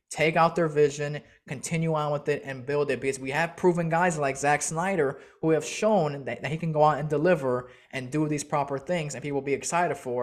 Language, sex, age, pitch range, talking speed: English, male, 20-39, 135-170 Hz, 240 wpm